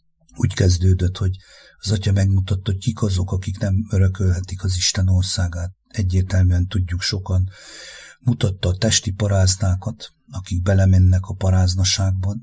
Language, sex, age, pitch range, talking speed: English, male, 50-69, 95-105 Hz, 125 wpm